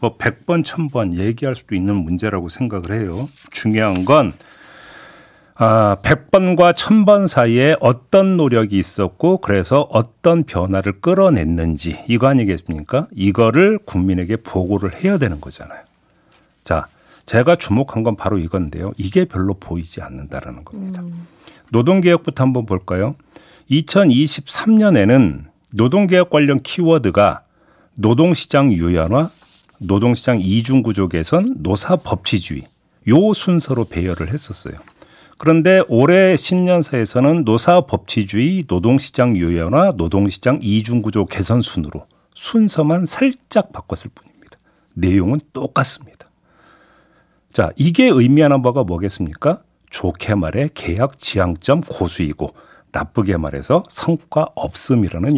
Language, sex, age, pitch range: Korean, male, 50-69, 95-160 Hz